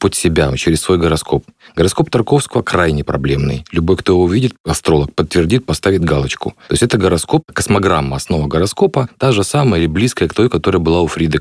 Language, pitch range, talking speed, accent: Russian, 75-105 Hz, 185 wpm, native